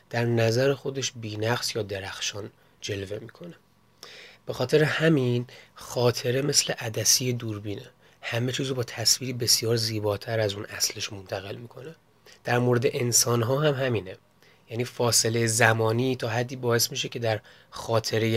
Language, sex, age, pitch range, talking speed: Persian, male, 30-49, 115-130 Hz, 135 wpm